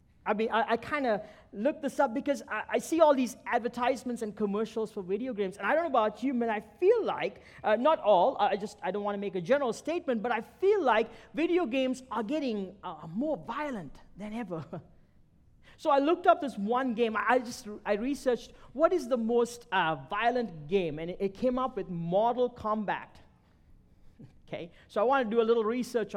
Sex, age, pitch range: male, 40-59, 195-250 Hz